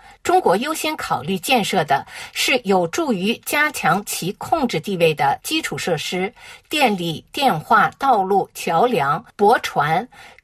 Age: 50-69